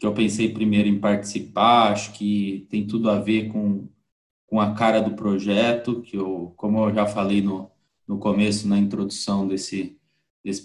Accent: Brazilian